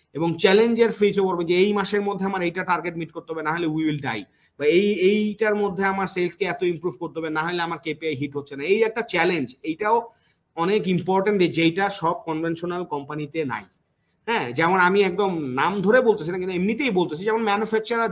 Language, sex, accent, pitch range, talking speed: Bengali, male, native, 170-210 Hz, 60 wpm